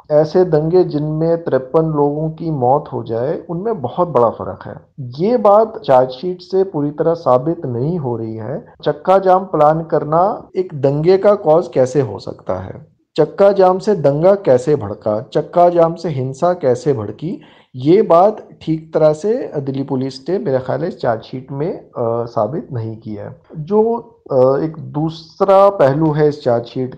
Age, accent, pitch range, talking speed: 40-59, native, 130-175 Hz, 160 wpm